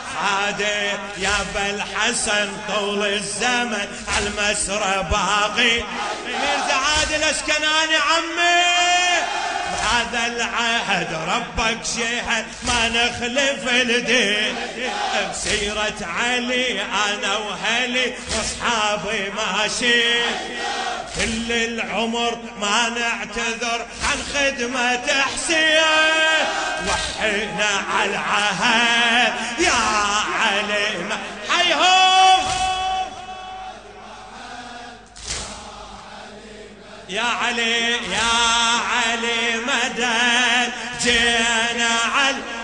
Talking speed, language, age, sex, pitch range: 65 wpm, Arabic, 30-49, male, 210-245 Hz